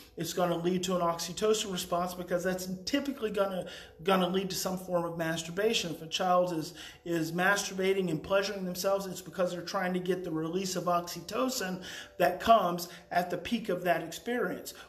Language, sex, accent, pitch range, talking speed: English, male, American, 180-215 Hz, 195 wpm